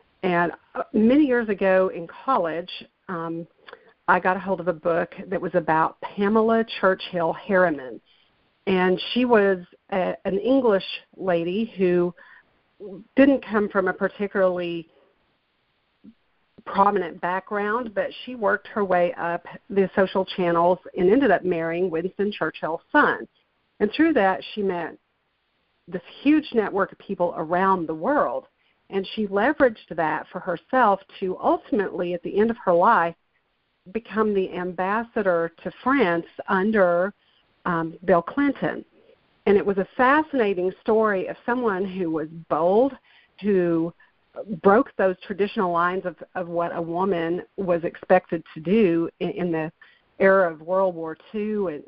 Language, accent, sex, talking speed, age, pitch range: English, American, female, 140 wpm, 50-69, 175-215 Hz